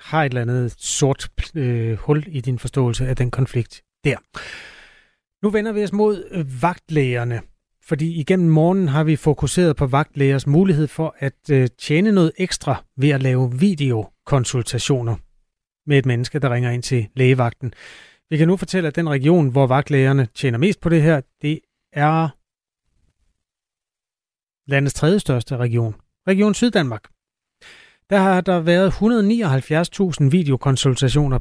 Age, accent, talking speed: 30-49, native, 140 wpm